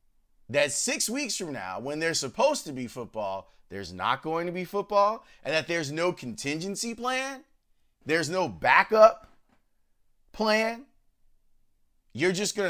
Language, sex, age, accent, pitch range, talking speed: English, male, 30-49, American, 165-220 Hz, 140 wpm